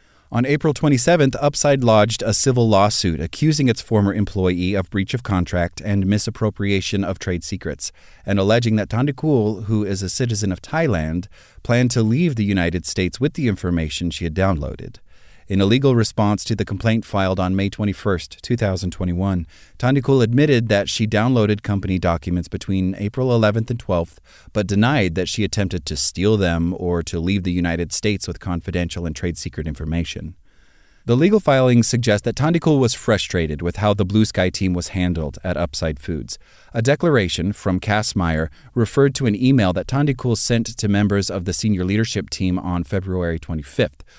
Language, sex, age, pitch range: English, male, 30-49, 90-115 Hz